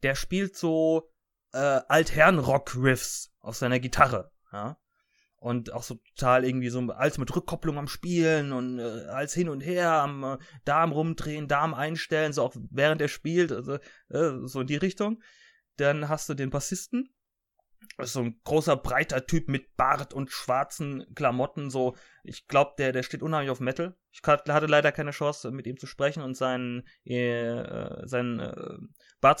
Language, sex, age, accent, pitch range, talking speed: German, male, 30-49, German, 130-175 Hz, 170 wpm